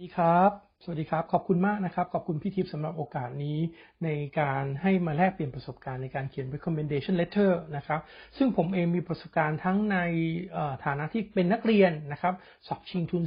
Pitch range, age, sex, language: 145-185 Hz, 60-79, male, Thai